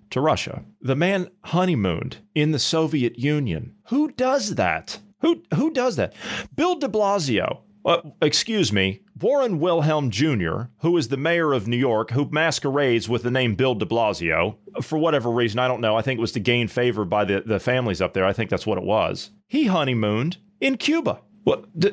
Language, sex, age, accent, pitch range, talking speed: English, male, 40-59, American, 120-180 Hz, 190 wpm